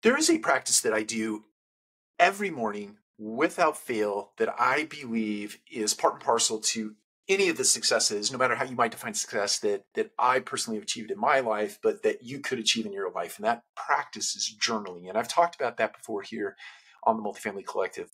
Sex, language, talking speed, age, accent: male, English, 210 wpm, 40-59, American